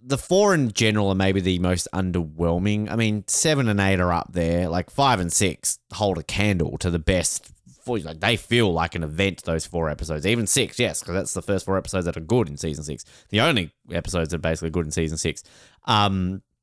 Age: 20-39